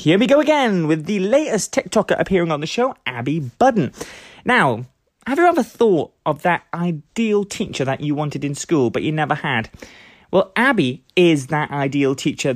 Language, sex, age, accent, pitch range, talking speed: English, male, 30-49, British, 140-195 Hz, 180 wpm